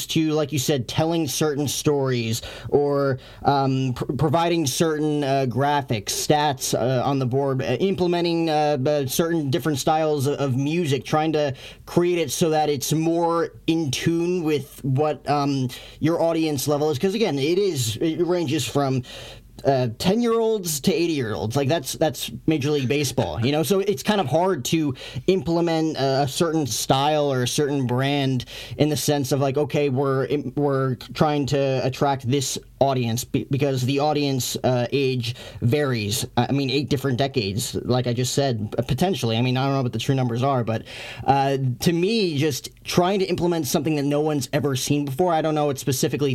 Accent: American